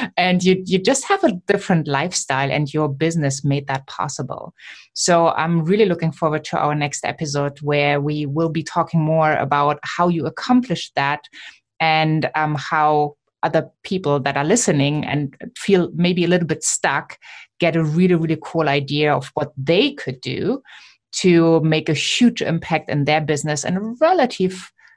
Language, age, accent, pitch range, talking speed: English, 20-39, German, 150-185 Hz, 170 wpm